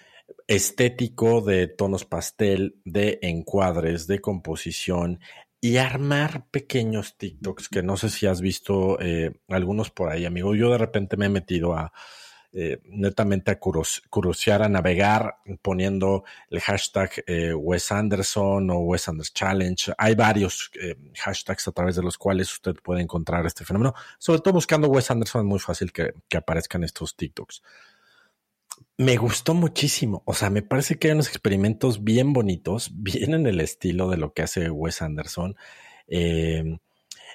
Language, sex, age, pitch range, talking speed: Spanish, male, 50-69, 85-110 Hz, 155 wpm